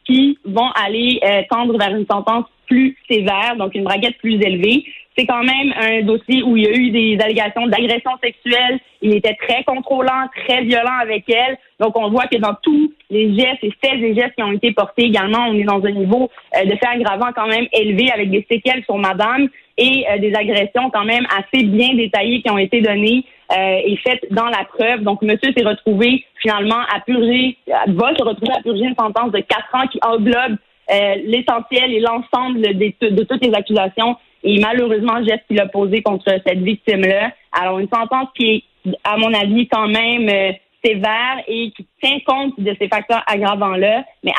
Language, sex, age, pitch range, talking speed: French, female, 30-49, 205-245 Hz, 195 wpm